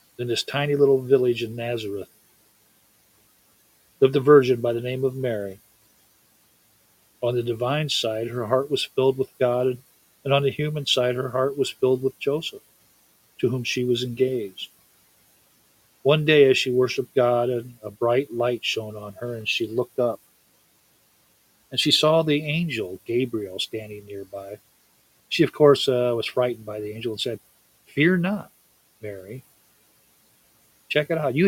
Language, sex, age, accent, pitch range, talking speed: English, male, 50-69, American, 110-140 Hz, 160 wpm